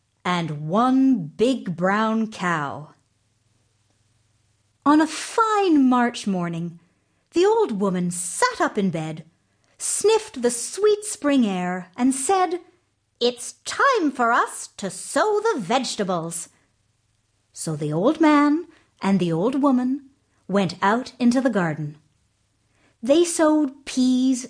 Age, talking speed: 50-69, 120 wpm